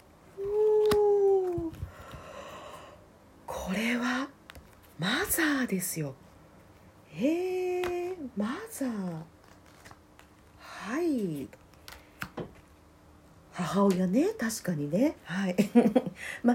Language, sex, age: Japanese, female, 40-59